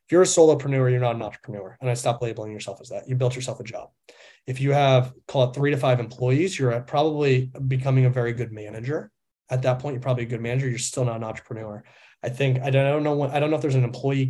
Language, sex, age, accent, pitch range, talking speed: English, male, 30-49, American, 120-135 Hz, 270 wpm